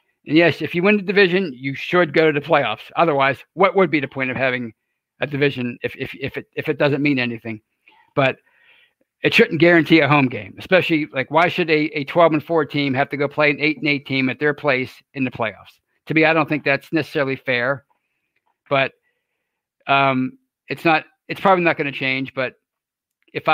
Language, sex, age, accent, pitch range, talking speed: English, male, 50-69, American, 130-160 Hz, 215 wpm